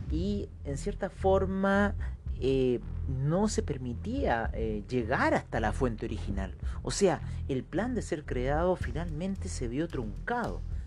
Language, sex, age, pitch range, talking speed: Spanish, male, 40-59, 100-155 Hz, 140 wpm